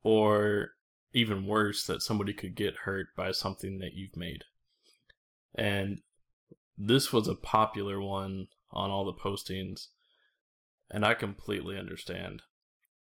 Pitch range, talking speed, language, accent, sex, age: 95-105 Hz, 125 wpm, English, American, male, 20-39